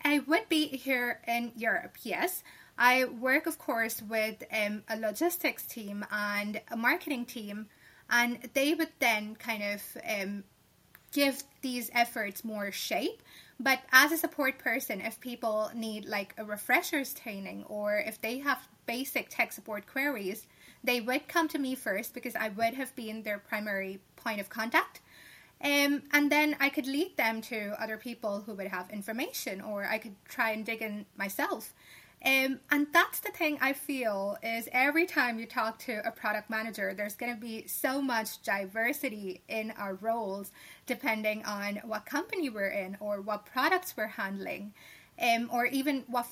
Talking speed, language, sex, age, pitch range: 170 wpm, English, female, 20-39, 210-270 Hz